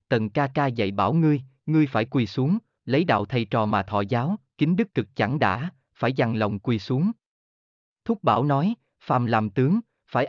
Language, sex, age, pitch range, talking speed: Vietnamese, male, 30-49, 115-160 Hz, 200 wpm